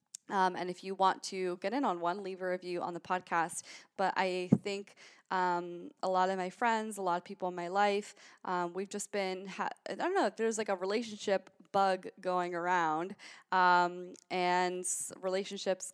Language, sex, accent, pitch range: English, female, American, 180-205 Hz